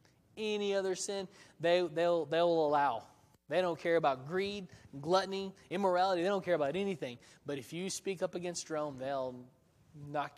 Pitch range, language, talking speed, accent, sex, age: 145-175 Hz, English, 160 wpm, American, male, 20-39